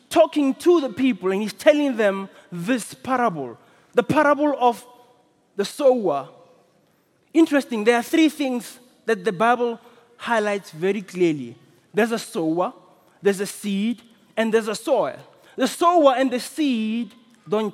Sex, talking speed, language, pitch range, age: male, 140 wpm, English, 195-275 Hz, 20-39